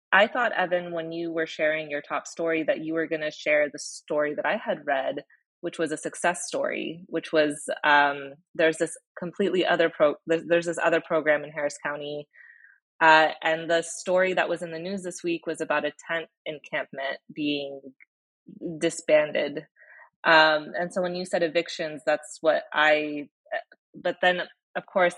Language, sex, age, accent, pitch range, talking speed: English, female, 20-39, American, 150-180 Hz, 175 wpm